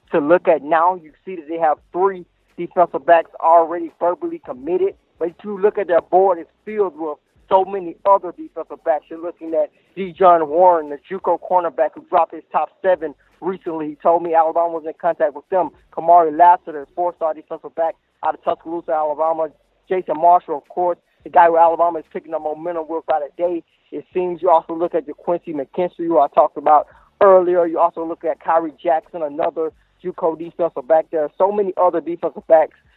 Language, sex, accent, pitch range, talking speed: English, male, American, 155-180 Hz, 200 wpm